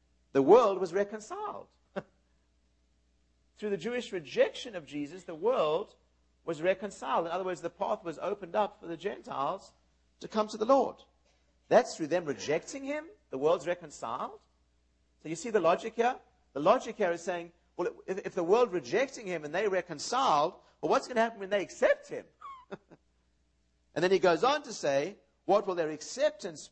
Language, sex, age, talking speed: English, male, 50-69, 175 wpm